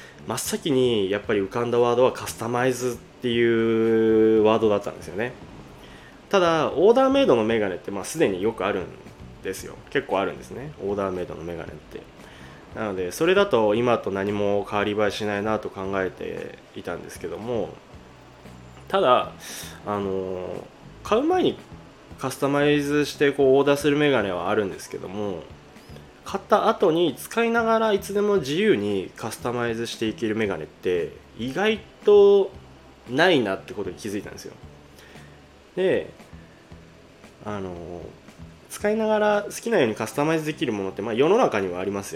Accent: native